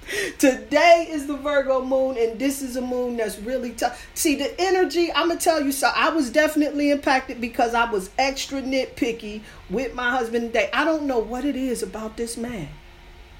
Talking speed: 195 wpm